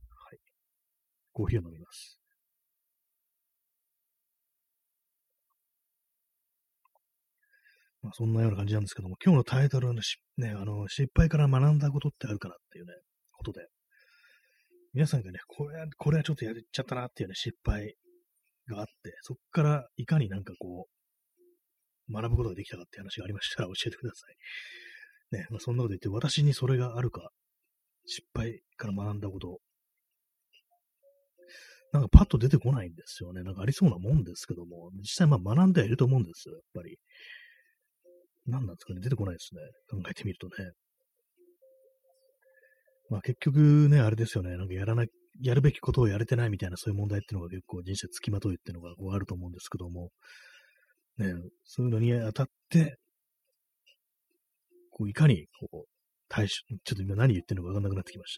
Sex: male